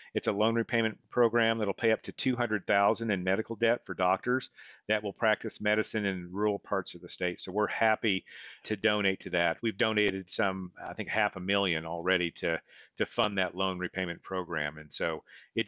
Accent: American